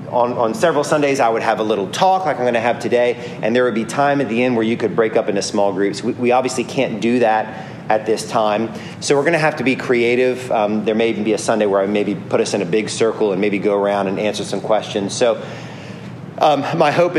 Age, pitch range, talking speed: 30-49, 110-150 Hz, 270 wpm